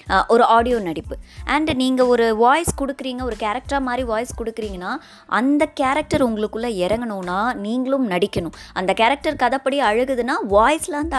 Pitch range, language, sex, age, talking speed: 195-265 Hz, Tamil, male, 20-39, 130 wpm